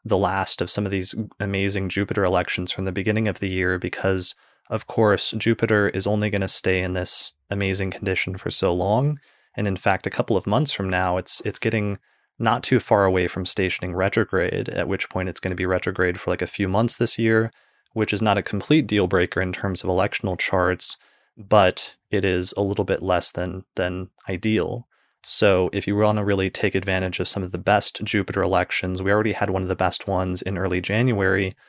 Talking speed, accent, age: 215 wpm, American, 30-49